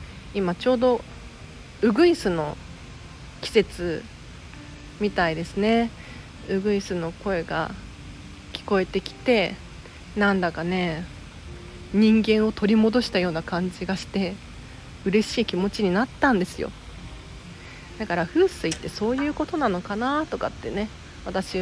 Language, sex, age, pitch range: Japanese, female, 40-59, 175-235 Hz